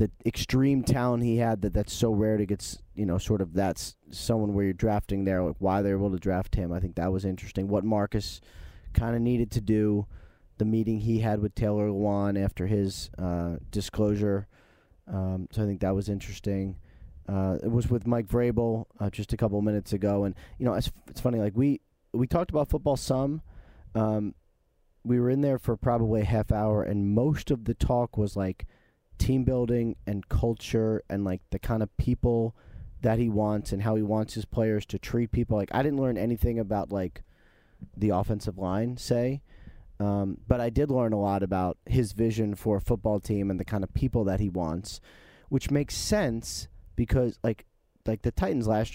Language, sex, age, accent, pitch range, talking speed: English, male, 30-49, American, 95-115 Hz, 200 wpm